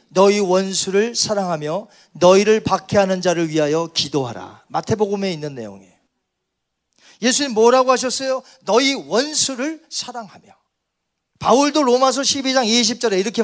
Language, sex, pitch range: Korean, male, 180-275 Hz